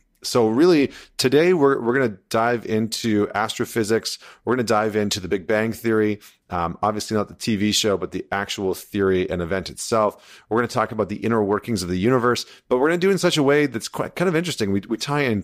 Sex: male